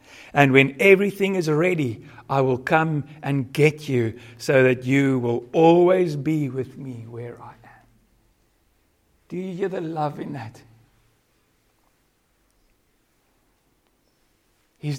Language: English